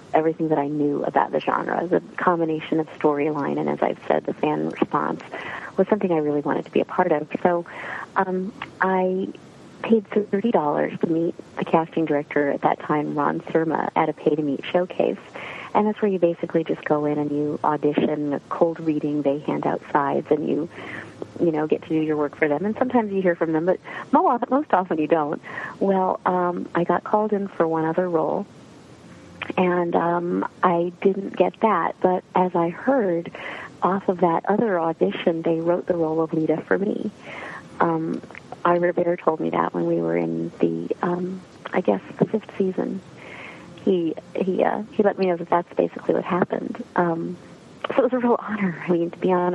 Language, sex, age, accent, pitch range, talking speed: English, female, 40-59, American, 155-195 Hz, 195 wpm